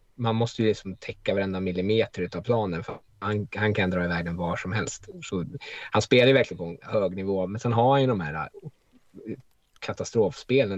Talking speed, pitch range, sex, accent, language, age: 200 wpm, 90-110 Hz, male, Norwegian, Swedish, 20-39